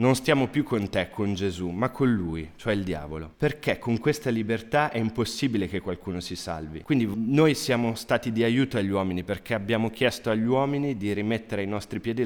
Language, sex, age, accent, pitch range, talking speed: Italian, male, 30-49, native, 100-120 Hz, 200 wpm